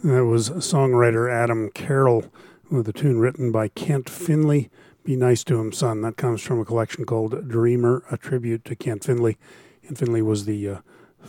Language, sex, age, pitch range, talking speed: English, male, 40-59, 115-130 Hz, 180 wpm